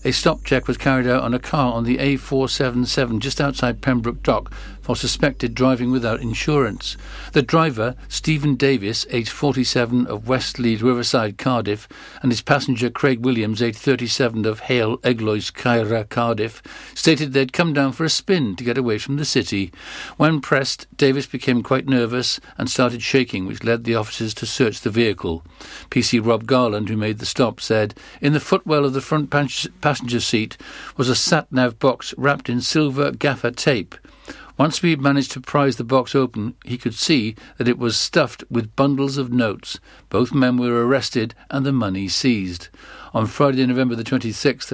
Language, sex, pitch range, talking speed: English, male, 115-140 Hz, 175 wpm